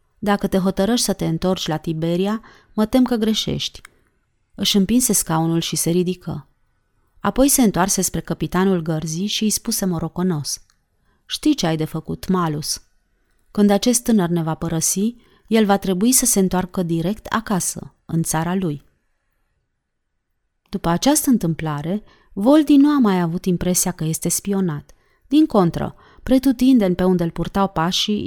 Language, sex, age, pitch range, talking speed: Romanian, female, 30-49, 165-205 Hz, 150 wpm